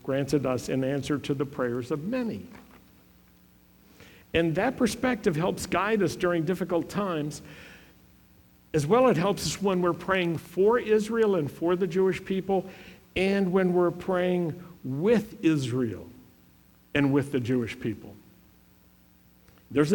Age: 60-79